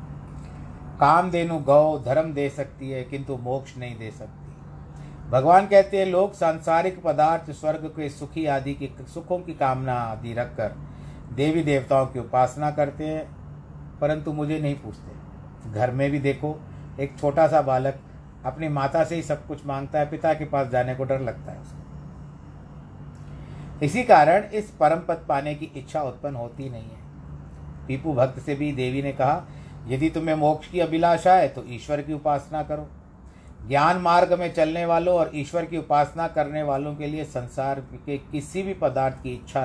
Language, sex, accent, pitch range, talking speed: Hindi, male, native, 125-155 Hz, 170 wpm